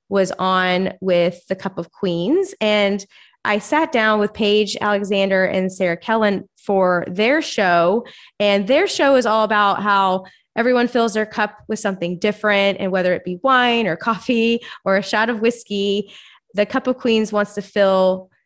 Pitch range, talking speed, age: 185-220 Hz, 170 wpm, 20-39